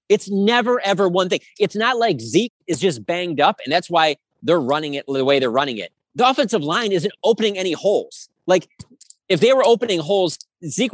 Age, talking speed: 30-49, 210 wpm